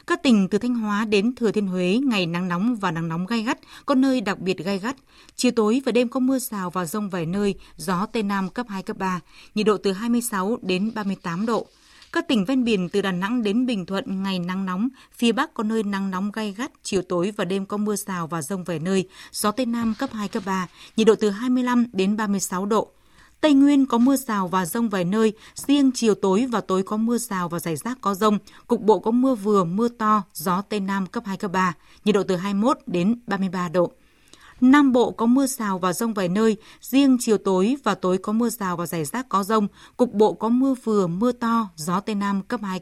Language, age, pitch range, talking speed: Vietnamese, 20-39, 190-235 Hz, 240 wpm